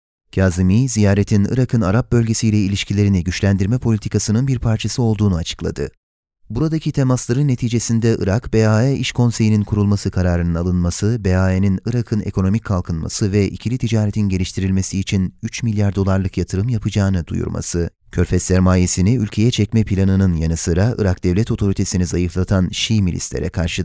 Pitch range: 95-115 Hz